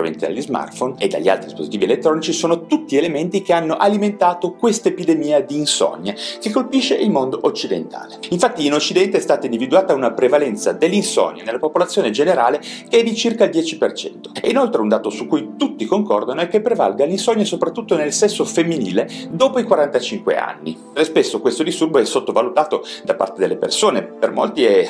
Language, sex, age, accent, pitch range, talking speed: Italian, male, 40-59, native, 170-265 Hz, 175 wpm